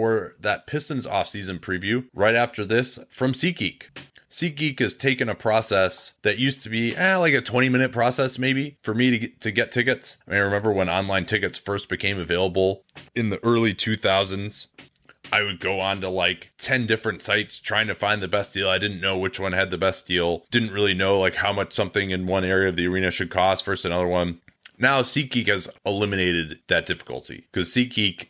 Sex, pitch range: male, 95-125 Hz